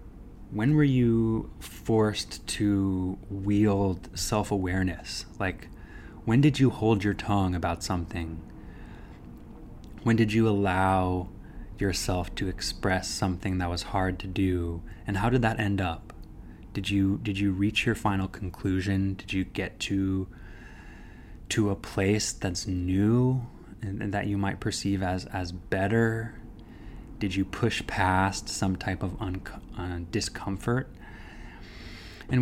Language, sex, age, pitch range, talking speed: English, male, 20-39, 90-110 Hz, 135 wpm